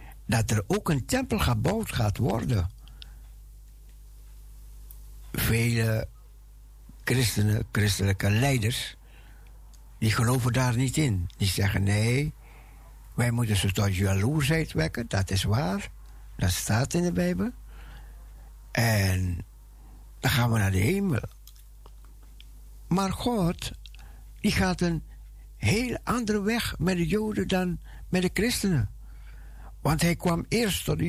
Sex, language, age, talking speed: male, Dutch, 60-79, 120 wpm